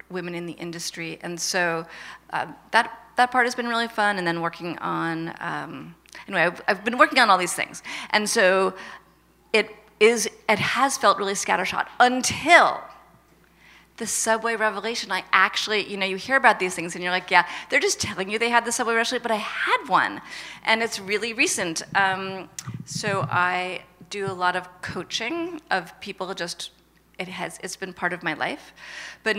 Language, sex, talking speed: English, female, 185 wpm